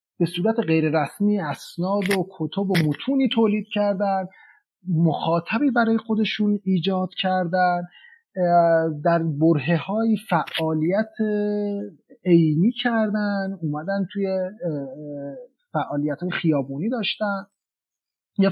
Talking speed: 90 wpm